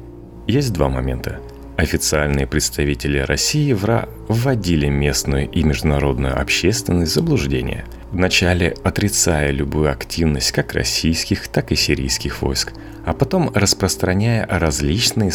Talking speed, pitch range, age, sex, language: 115 wpm, 75-110 Hz, 30-49, male, Russian